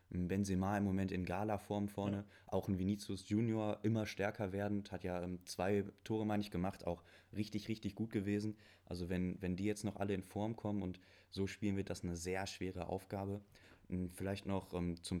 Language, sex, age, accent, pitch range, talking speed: German, male, 20-39, German, 95-105 Hz, 185 wpm